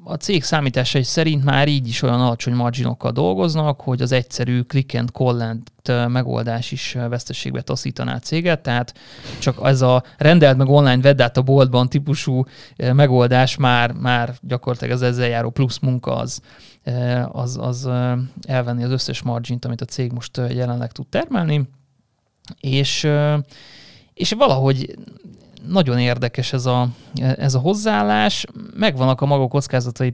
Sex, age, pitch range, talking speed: male, 30-49, 120-145 Hz, 135 wpm